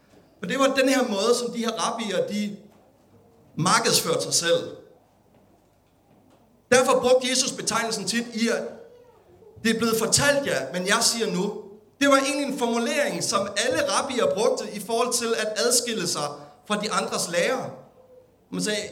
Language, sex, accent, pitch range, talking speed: Danish, male, native, 200-275 Hz, 160 wpm